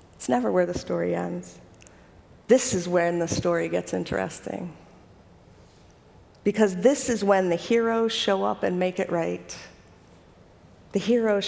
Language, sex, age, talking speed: English, female, 50-69, 140 wpm